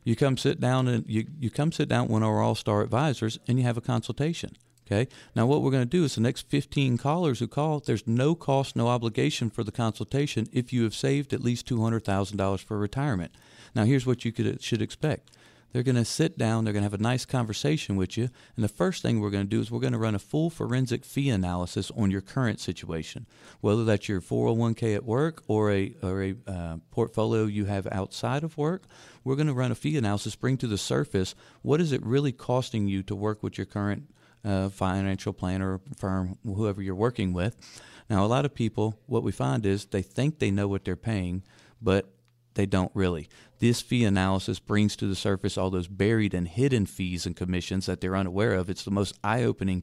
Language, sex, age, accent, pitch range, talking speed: English, male, 50-69, American, 100-125 Hz, 220 wpm